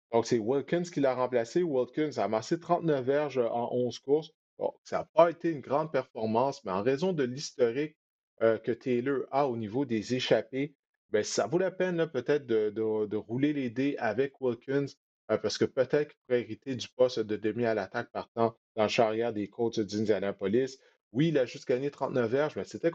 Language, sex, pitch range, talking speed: French, male, 115-140 Hz, 200 wpm